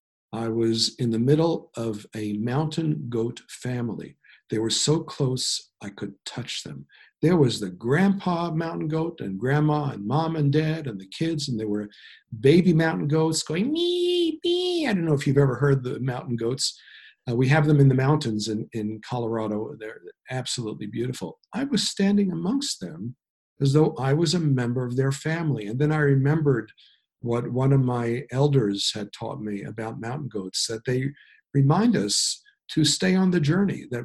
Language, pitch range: English, 120-155 Hz